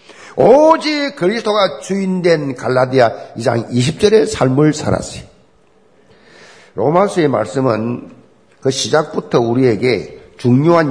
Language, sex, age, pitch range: Korean, male, 50-69, 155-215 Hz